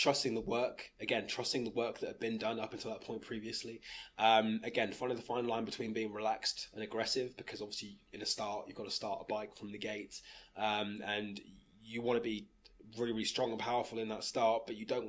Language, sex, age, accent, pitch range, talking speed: English, male, 20-39, British, 110-135 Hz, 235 wpm